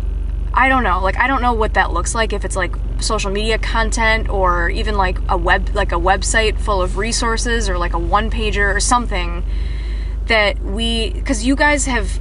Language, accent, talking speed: English, American, 200 wpm